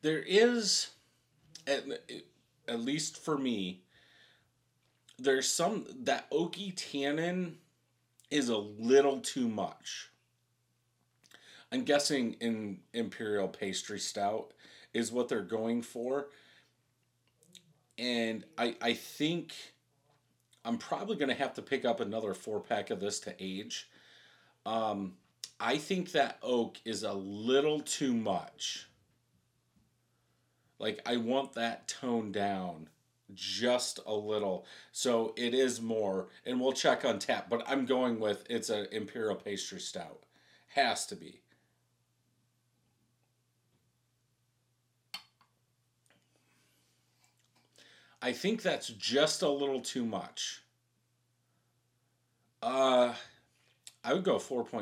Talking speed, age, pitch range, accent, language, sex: 110 wpm, 40-59, 115-135 Hz, American, English, male